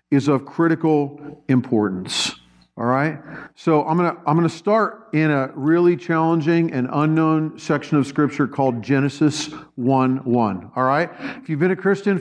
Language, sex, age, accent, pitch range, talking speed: English, male, 50-69, American, 145-205 Hz, 155 wpm